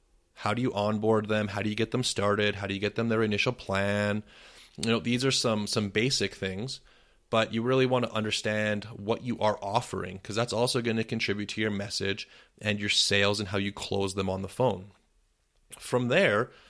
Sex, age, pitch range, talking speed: male, 30-49, 100-120 Hz, 210 wpm